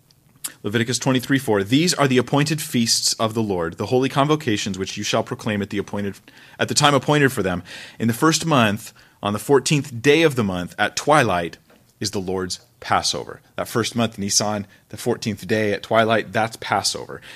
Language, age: English, 30-49